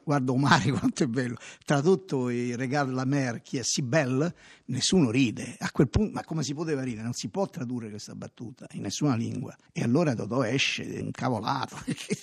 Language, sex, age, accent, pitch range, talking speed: Italian, male, 50-69, native, 115-150 Hz, 200 wpm